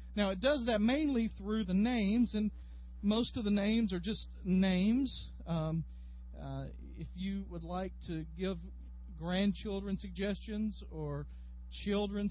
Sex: male